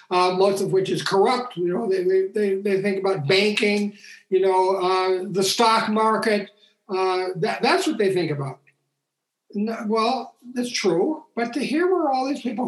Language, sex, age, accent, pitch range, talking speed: English, male, 60-79, American, 155-200 Hz, 180 wpm